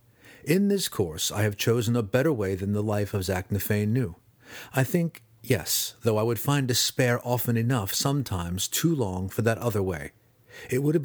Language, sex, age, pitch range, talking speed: English, male, 40-59, 100-125 Hz, 195 wpm